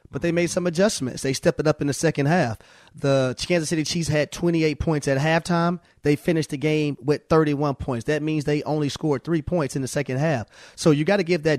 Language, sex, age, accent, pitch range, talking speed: English, male, 30-49, American, 135-160 Hz, 240 wpm